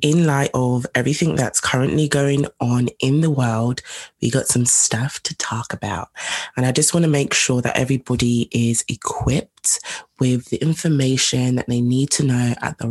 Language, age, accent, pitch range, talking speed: English, 20-39, British, 120-140 Hz, 180 wpm